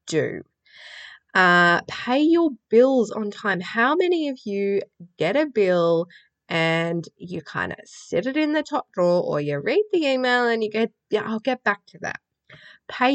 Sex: female